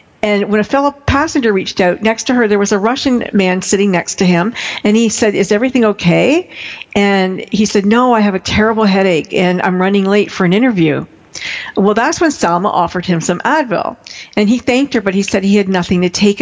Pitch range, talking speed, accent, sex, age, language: 185-250 Hz, 225 wpm, American, female, 50-69, English